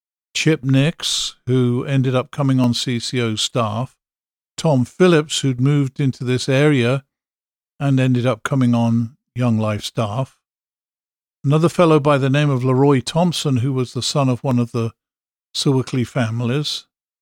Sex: male